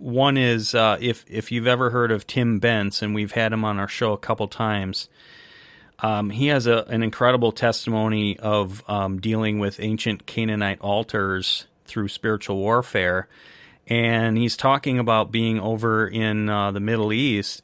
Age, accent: 30-49, American